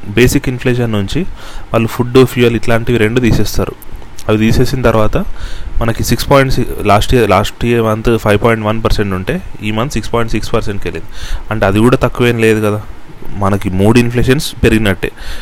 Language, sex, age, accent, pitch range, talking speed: Telugu, male, 30-49, native, 105-125 Hz, 165 wpm